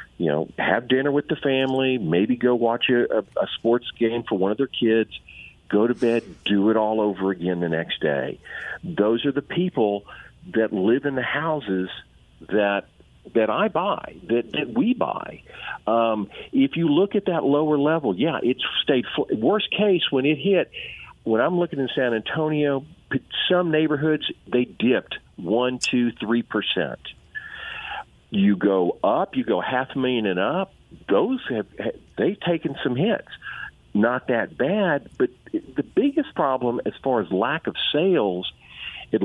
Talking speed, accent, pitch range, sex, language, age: 165 wpm, American, 105-150 Hz, male, English, 50-69